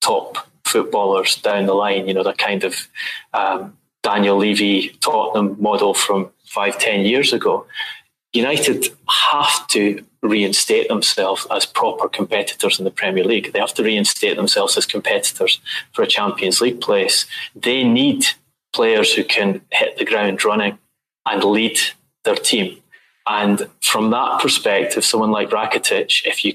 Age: 20-39